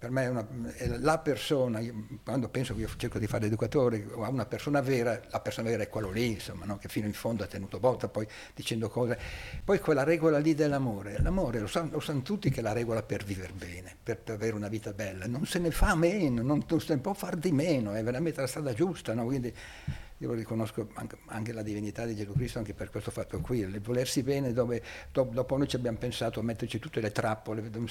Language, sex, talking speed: Italian, male, 230 wpm